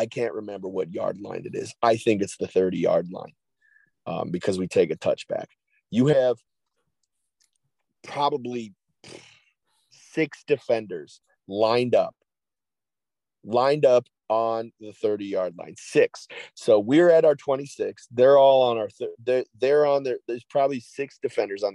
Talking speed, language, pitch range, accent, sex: 150 wpm, English, 115-170 Hz, American, male